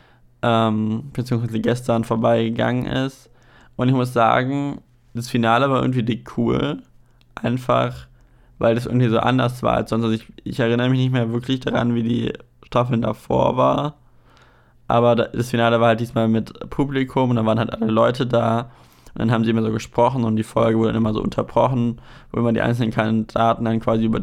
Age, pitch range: 20-39, 115-125 Hz